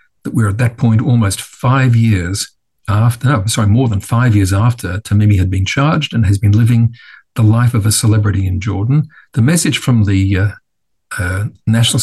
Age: 50-69